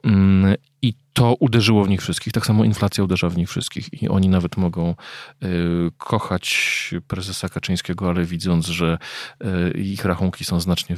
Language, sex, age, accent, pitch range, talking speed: Polish, male, 40-59, native, 90-110 Hz, 150 wpm